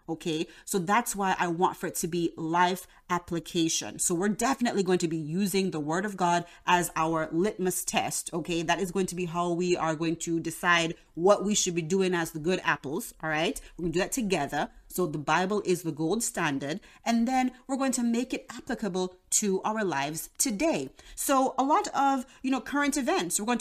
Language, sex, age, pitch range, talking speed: English, female, 30-49, 165-210 Hz, 220 wpm